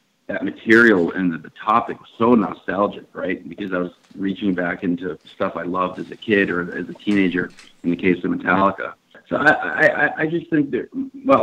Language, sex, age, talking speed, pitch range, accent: English, male, 40-59, 200 wpm, 100-120 Hz, American